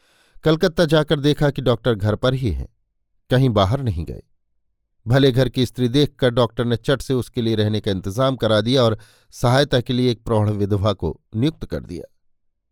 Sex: male